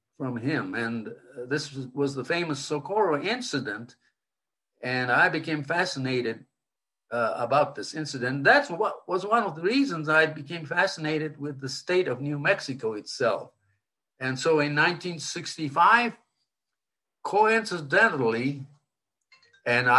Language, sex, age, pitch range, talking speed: English, male, 50-69, 125-160 Hz, 125 wpm